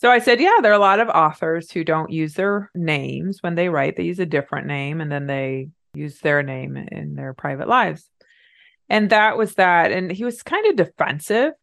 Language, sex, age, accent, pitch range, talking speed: English, female, 30-49, American, 155-210 Hz, 220 wpm